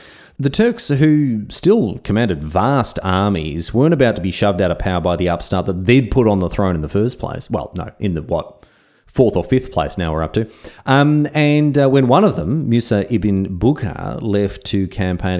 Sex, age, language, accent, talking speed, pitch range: male, 30-49, English, Australian, 210 wpm, 90-130 Hz